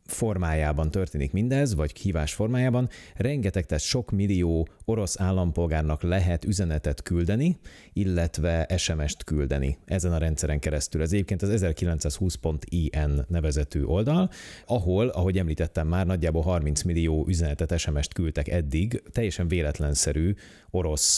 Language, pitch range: Hungarian, 75-95 Hz